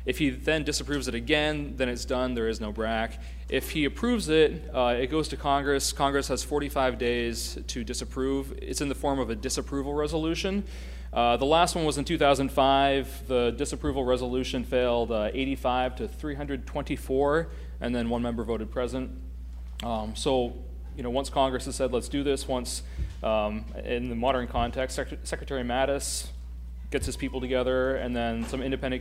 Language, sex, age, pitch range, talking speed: English, male, 30-49, 115-140 Hz, 175 wpm